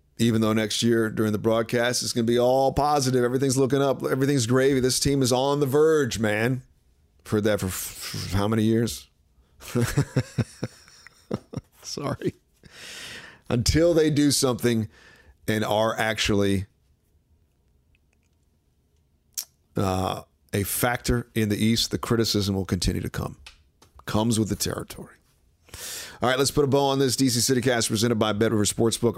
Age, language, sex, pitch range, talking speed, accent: 40-59, English, male, 100-125 Hz, 145 wpm, American